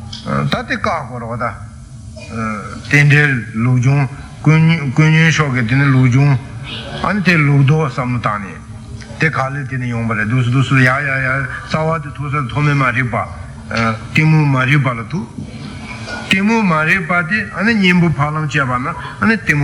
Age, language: 60-79, Italian